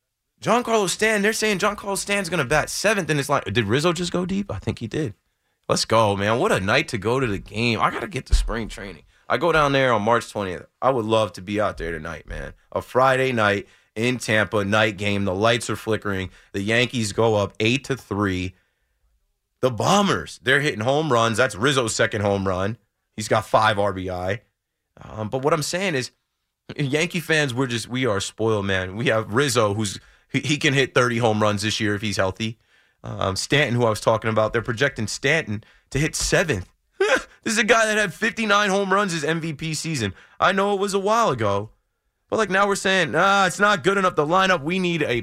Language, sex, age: English, male, 30-49